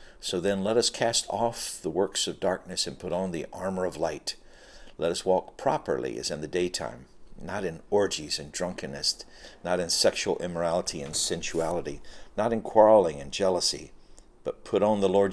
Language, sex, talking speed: English, male, 180 wpm